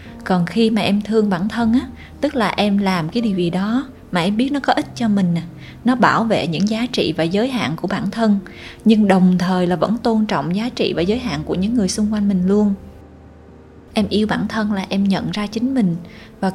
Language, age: Vietnamese, 20-39